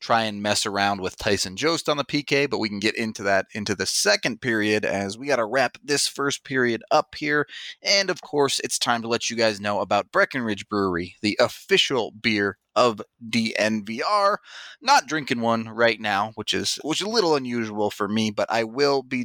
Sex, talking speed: male, 205 wpm